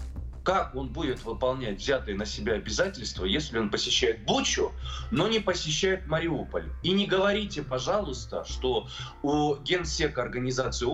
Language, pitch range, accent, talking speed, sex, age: Russian, 100-155 Hz, native, 130 wpm, male, 20-39